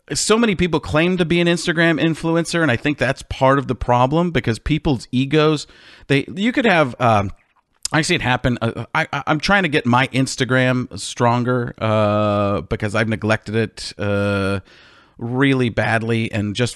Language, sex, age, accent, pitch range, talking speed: English, male, 40-59, American, 110-145 Hz, 170 wpm